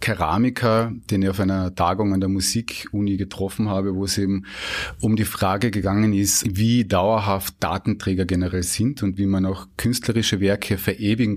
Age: 30-49